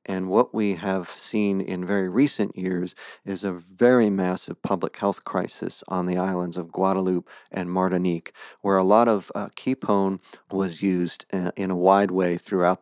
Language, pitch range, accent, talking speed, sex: English, 90-100 Hz, American, 170 wpm, male